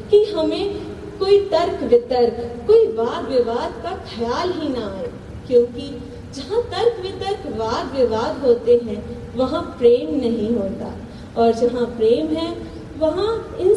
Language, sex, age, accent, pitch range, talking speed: Hindi, female, 30-49, native, 240-370 Hz, 135 wpm